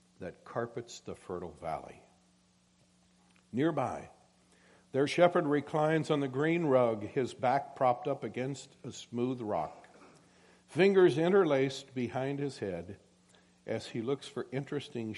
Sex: male